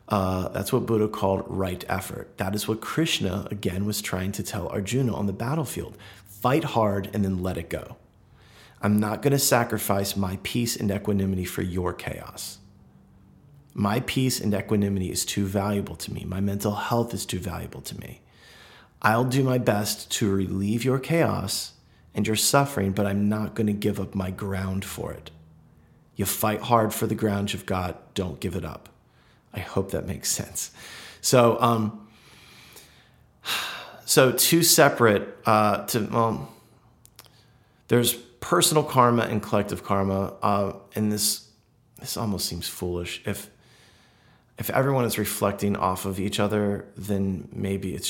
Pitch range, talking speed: 95-115 Hz, 160 wpm